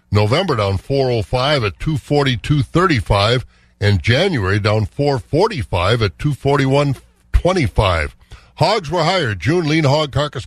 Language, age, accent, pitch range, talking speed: English, 50-69, American, 110-150 Hz, 95 wpm